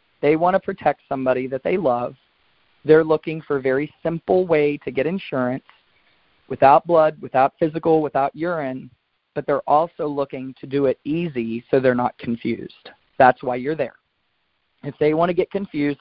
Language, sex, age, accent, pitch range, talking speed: English, male, 40-59, American, 130-155 Hz, 170 wpm